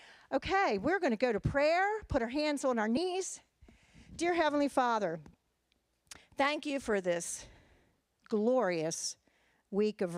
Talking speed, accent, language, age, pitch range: 130 wpm, American, English, 50-69, 175-220 Hz